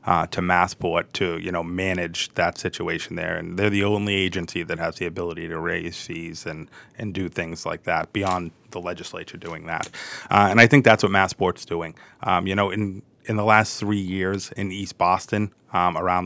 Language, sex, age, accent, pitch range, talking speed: English, male, 30-49, American, 90-105 Hz, 205 wpm